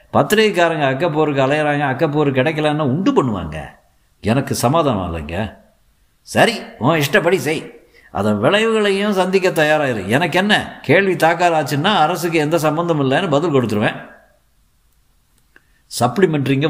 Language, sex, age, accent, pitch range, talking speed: Tamil, male, 60-79, native, 110-160 Hz, 110 wpm